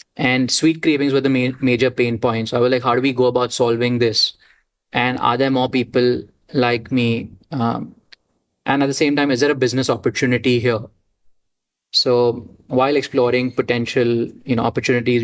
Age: 20-39